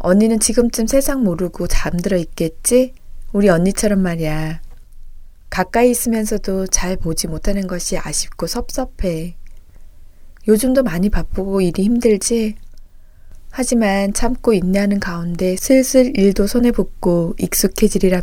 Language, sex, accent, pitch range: Korean, female, native, 175-230 Hz